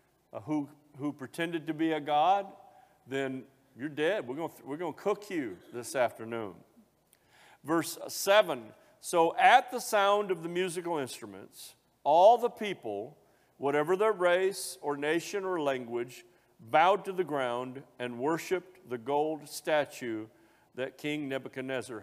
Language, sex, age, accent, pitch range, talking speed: English, male, 50-69, American, 135-180 Hz, 140 wpm